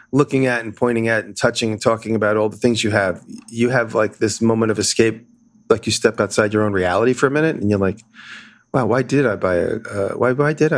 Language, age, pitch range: English, 30-49, 105-125 Hz